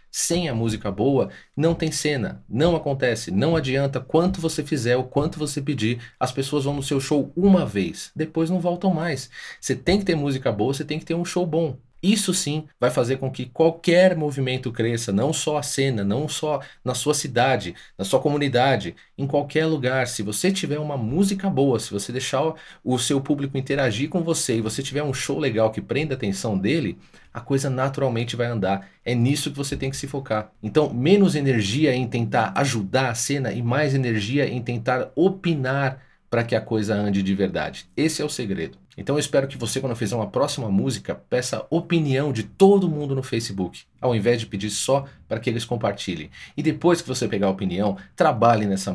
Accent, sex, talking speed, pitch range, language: Brazilian, male, 205 wpm, 125-155 Hz, English